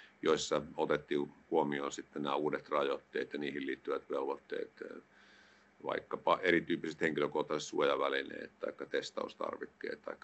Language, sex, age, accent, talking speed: Finnish, male, 50-69, native, 105 wpm